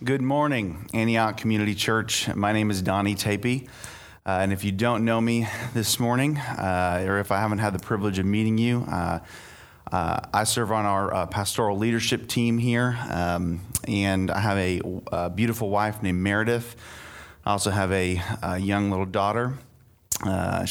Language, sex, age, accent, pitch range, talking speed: English, male, 30-49, American, 95-115 Hz, 175 wpm